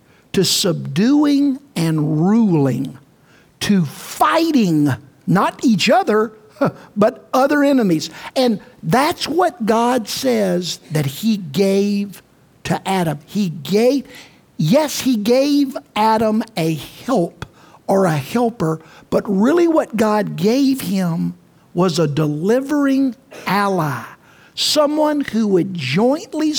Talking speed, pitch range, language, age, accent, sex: 105 wpm, 165-250 Hz, English, 50-69, American, male